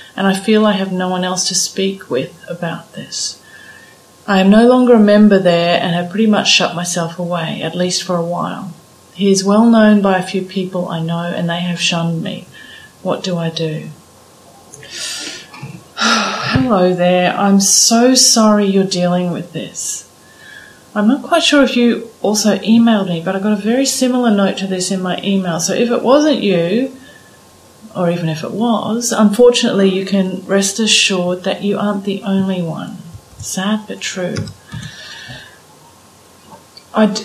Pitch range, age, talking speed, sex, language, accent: 180-215 Hz, 30-49, 170 wpm, female, English, Australian